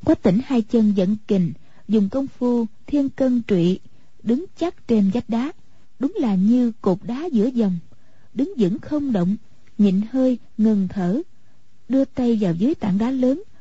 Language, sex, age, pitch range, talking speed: Vietnamese, female, 30-49, 200-265 Hz, 170 wpm